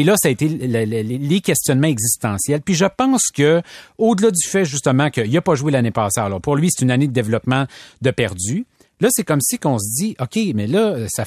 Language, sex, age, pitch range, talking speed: French, male, 30-49, 125-180 Hz, 230 wpm